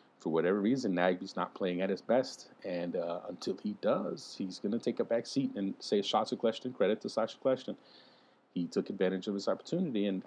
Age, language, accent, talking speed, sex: 30-49, English, American, 220 wpm, male